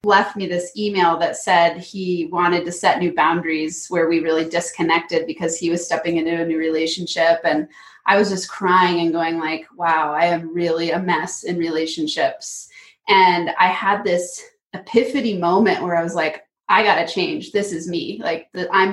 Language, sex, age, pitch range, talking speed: English, female, 20-39, 170-210 Hz, 185 wpm